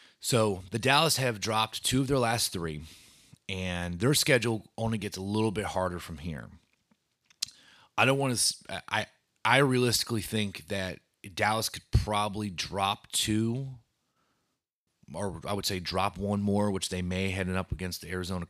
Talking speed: 160 wpm